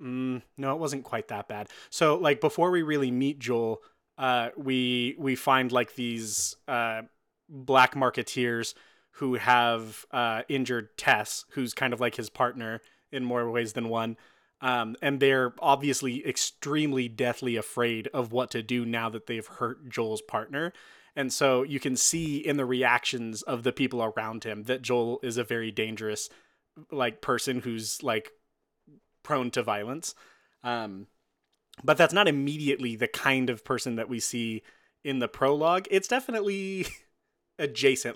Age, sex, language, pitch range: 20-39, male, English, 115-140 Hz